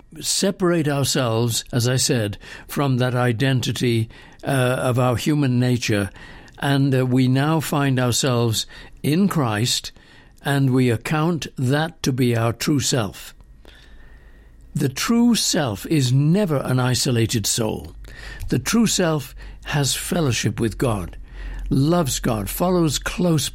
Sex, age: male, 60-79